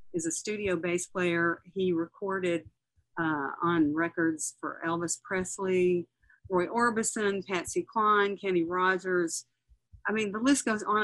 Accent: American